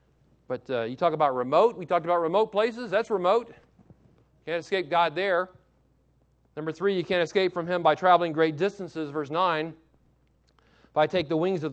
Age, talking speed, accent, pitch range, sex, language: 40-59, 185 wpm, American, 140-185 Hz, male, English